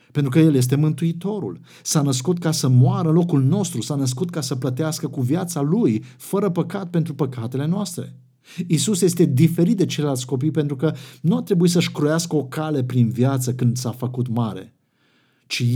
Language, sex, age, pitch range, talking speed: Romanian, male, 50-69, 125-165 Hz, 180 wpm